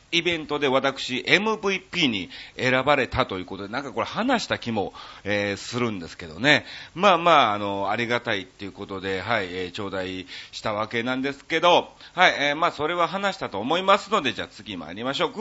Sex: male